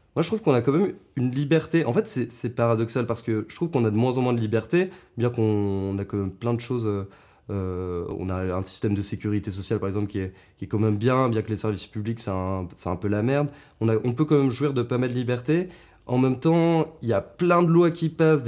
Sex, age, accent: male, 20-39, French